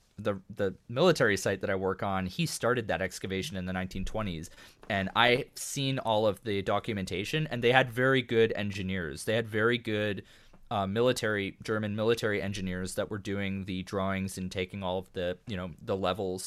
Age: 20-39